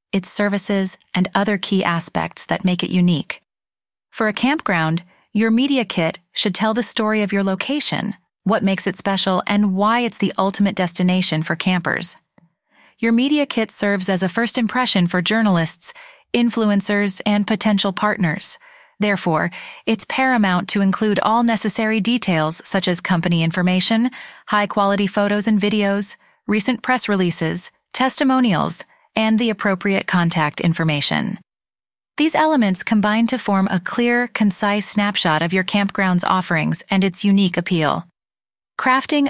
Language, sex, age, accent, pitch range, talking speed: English, female, 30-49, American, 180-225 Hz, 140 wpm